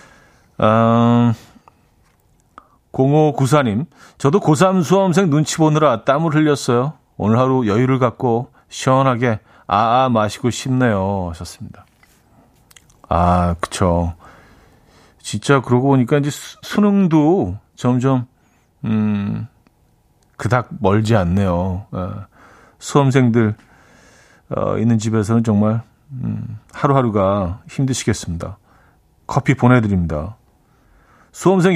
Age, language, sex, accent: 40-59, Korean, male, native